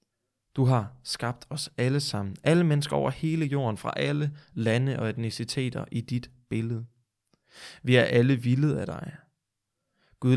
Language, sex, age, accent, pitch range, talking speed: Danish, male, 20-39, native, 110-135 Hz, 150 wpm